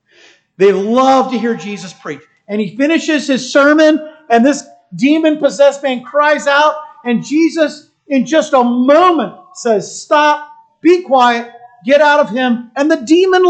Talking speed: 150 wpm